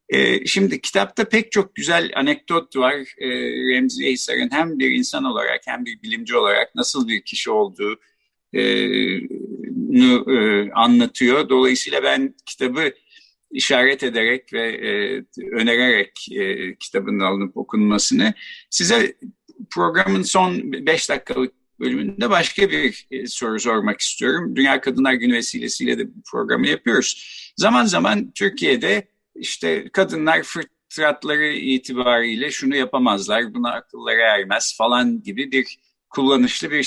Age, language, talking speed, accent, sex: 50-69, Turkish, 110 wpm, native, male